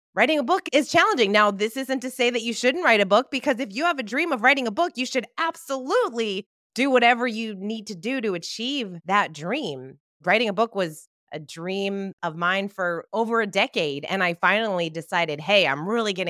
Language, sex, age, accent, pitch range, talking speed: English, female, 20-39, American, 170-235 Hz, 215 wpm